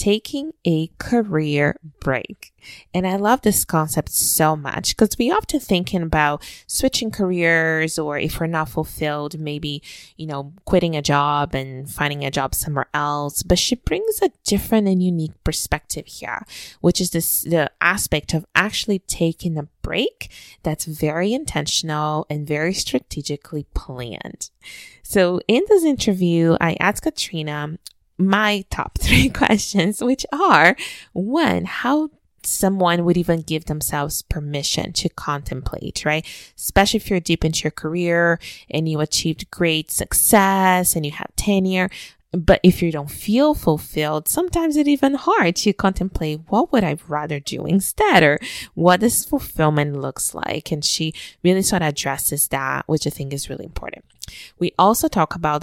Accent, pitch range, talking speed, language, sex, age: American, 150-195 Hz, 155 wpm, English, female, 20-39